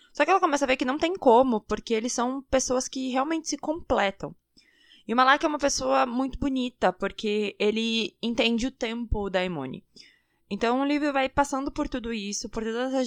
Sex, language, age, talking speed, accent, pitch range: female, Portuguese, 20-39, 200 wpm, Brazilian, 200-260 Hz